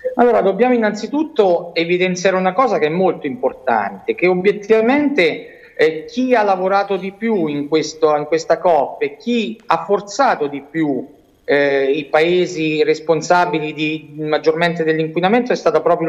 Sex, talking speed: male, 140 wpm